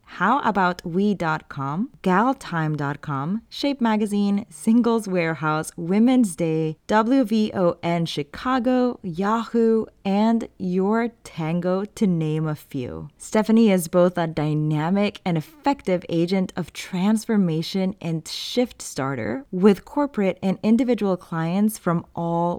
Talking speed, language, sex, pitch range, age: 115 wpm, English, female, 170-220 Hz, 20-39